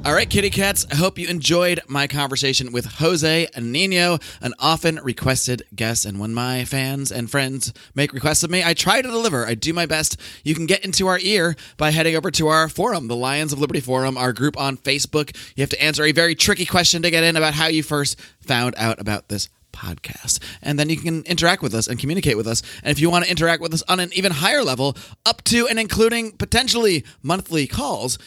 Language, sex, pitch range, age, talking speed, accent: English, male, 130-165 Hz, 30-49, 225 wpm, American